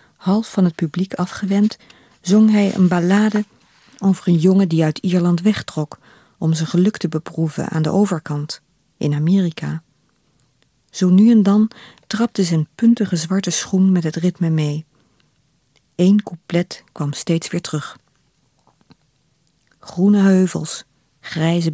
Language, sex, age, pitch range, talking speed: Dutch, female, 50-69, 155-185 Hz, 135 wpm